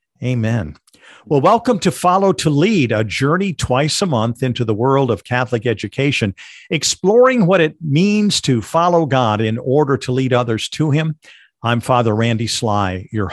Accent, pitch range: American, 120-160 Hz